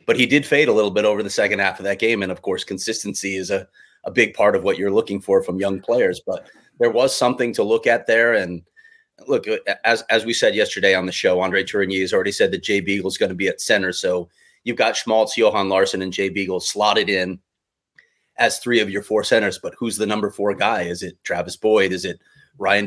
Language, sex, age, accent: English, male, 30-49, American